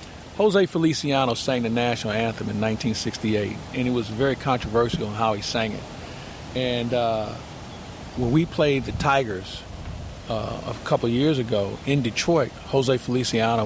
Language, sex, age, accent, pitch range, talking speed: English, male, 50-69, American, 115-150 Hz, 150 wpm